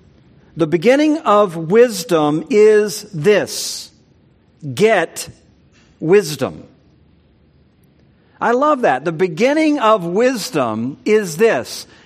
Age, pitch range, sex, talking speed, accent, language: 50-69, 170-245 Hz, male, 85 wpm, American, English